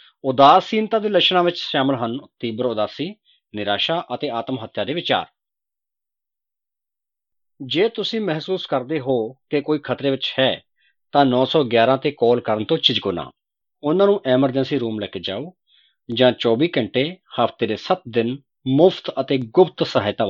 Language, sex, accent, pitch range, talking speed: English, male, Indian, 125-170 Hz, 130 wpm